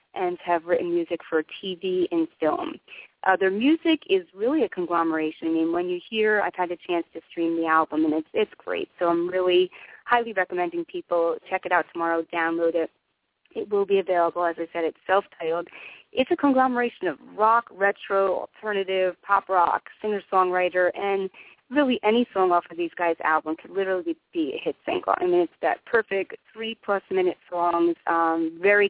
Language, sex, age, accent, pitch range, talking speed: English, female, 30-49, American, 170-225 Hz, 180 wpm